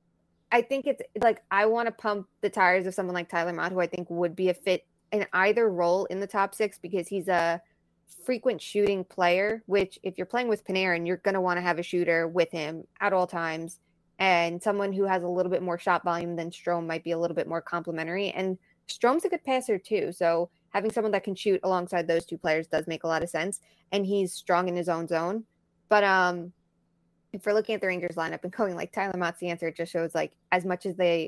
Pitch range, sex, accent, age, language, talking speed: 170-200 Hz, female, American, 20-39, English, 240 wpm